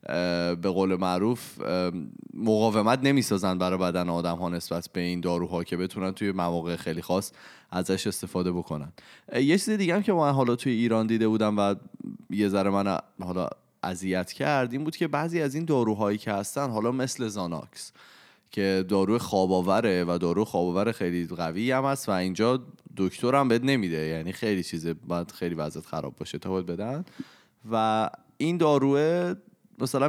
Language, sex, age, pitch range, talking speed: Persian, male, 20-39, 90-115 Hz, 160 wpm